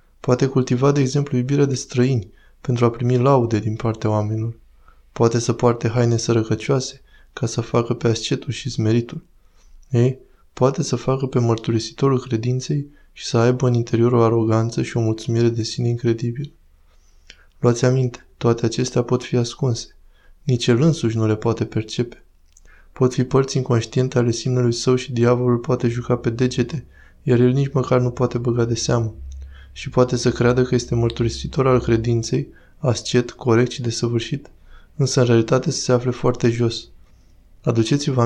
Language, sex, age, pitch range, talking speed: Romanian, male, 20-39, 115-130 Hz, 160 wpm